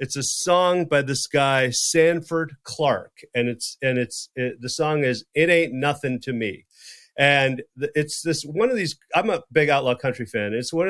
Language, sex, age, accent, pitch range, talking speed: English, male, 40-59, American, 120-150 Hz, 200 wpm